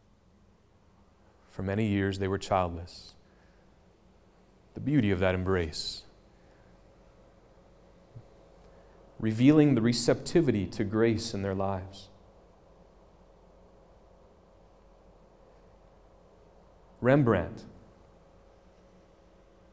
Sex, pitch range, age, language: male, 95-120 Hz, 30-49, English